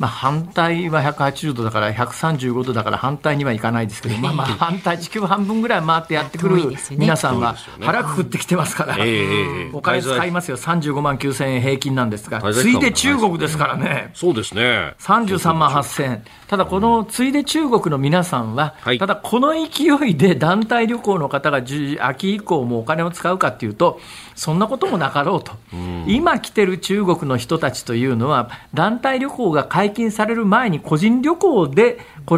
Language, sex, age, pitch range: Japanese, male, 50-69, 120-190 Hz